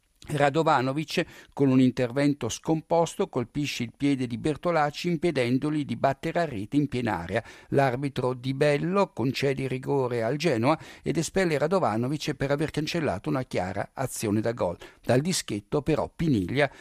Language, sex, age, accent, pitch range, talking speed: Italian, male, 60-79, native, 120-155 Hz, 145 wpm